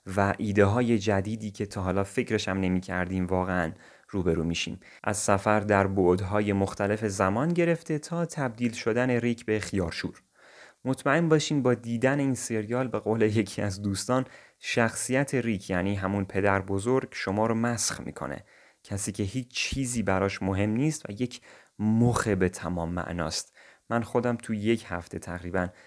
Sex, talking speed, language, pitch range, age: male, 150 wpm, Persian, 95-120 Hz, 30-49